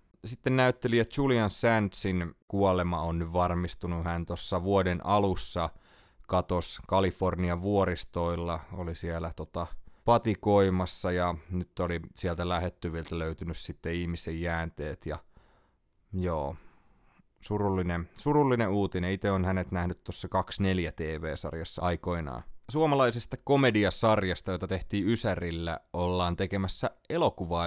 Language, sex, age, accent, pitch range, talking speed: Finnish, male, 30-49, native, 85-105 Hz, 105 wpm